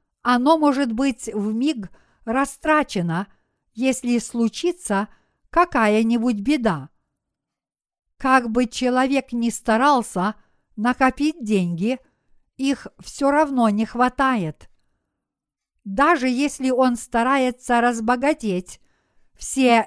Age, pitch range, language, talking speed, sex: 50-69, 220-270 Hz, Russian, 85 wpm, female